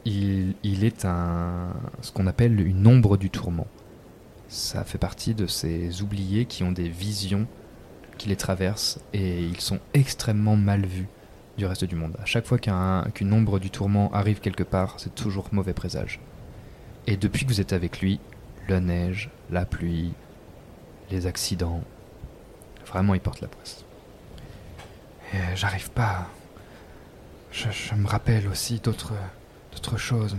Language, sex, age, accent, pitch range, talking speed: French, male, 20-39, French, 90-110 Hz, 155 wpm